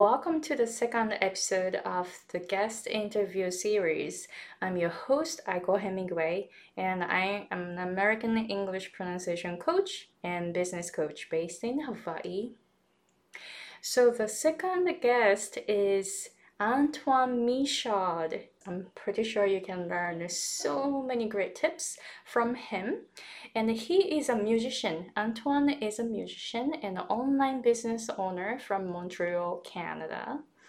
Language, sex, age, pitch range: Japanese, female, 20-39, 195-275 Hz